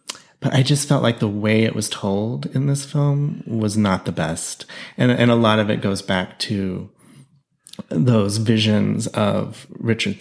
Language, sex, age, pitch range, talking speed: English, male, 30-49, 100-135 Hz, 175 wpm